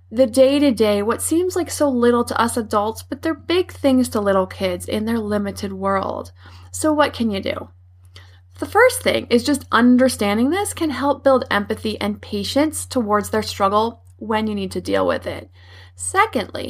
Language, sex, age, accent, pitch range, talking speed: English, female, 20-39, American, 200-265 Hz, 180 wpm